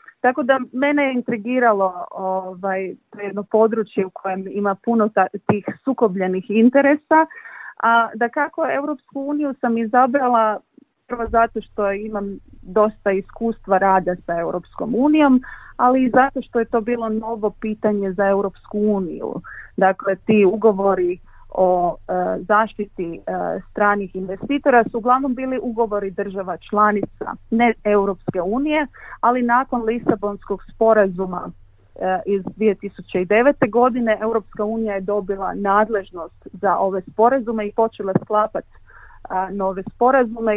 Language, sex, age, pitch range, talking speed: Croatian, female, 30-49, 190-240 Hz, 120 wpm